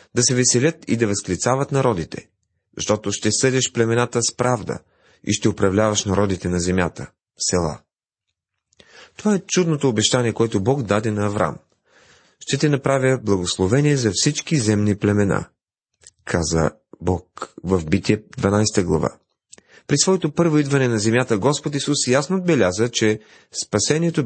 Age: 40-59